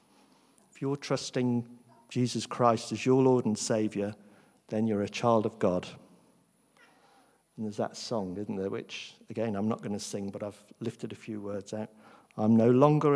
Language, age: English, 50-69